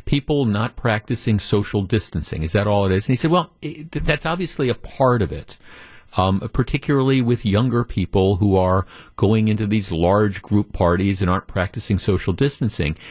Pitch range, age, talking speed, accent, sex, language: 105-145 Hz, 50-69, 180 wpm, American, male, English